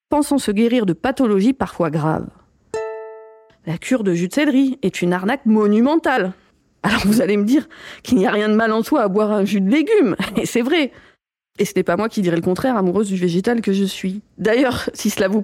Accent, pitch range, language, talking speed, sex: French, 195-250 Hz, French, 225 wpm, female